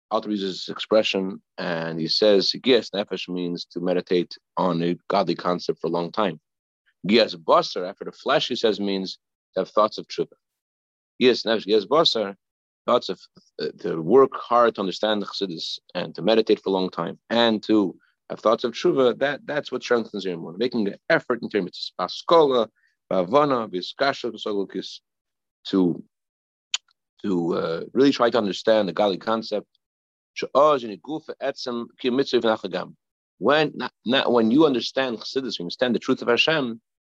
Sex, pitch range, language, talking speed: male, 90-120 Hz, English, 150 wpm